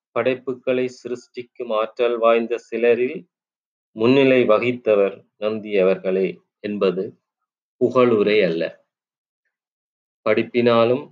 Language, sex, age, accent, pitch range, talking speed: Tamil, male, 30-49, native, 105-125 Hz, 70 wpm